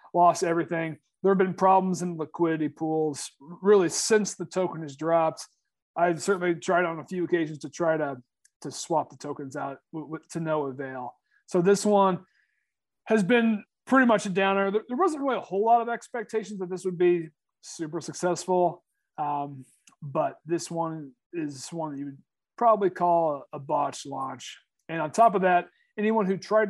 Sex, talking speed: male, 180 wpm